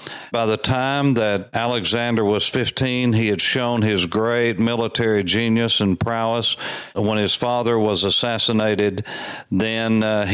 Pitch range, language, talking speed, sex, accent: 100-115 Hz, English, 135 wpm, male, American